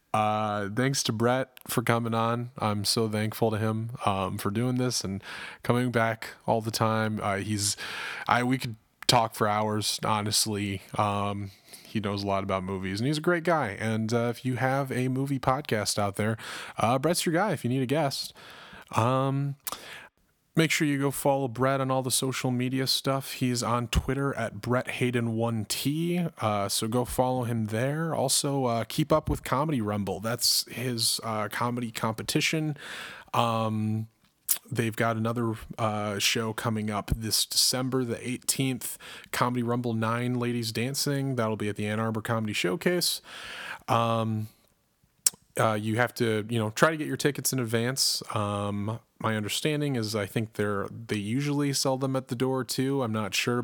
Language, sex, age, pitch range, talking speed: English, male, 20-39, 110-130 Hz, 175 wpm